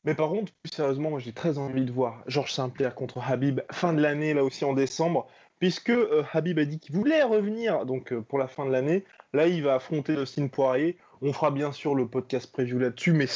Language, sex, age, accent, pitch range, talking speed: French, male, 20-39, French, 135-170 Hz, 235 wpm